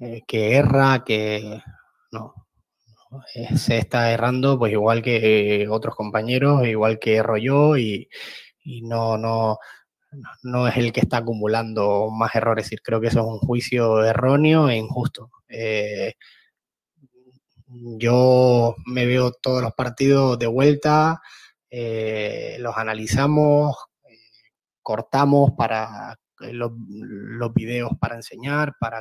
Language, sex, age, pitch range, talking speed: Portuguese, male, 20-39, 115-135 Hz, 125 wpm